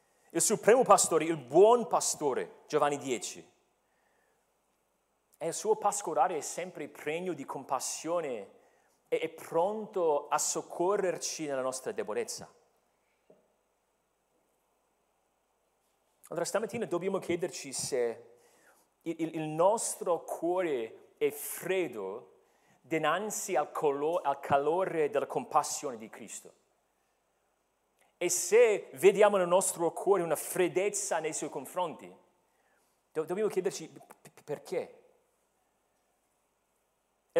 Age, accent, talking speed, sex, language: 40-59, native, 90 wpm, male, Italian